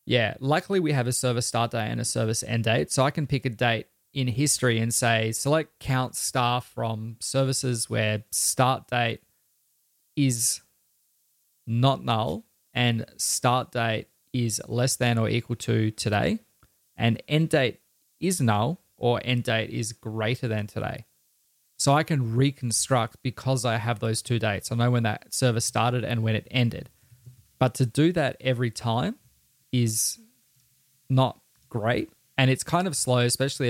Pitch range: 115-130 Hz